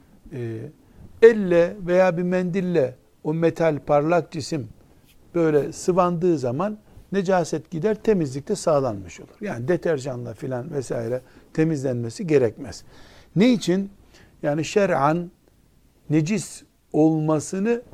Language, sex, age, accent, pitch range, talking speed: Turkish, male, 60-79, native, 130-170 Hz, 95 wpm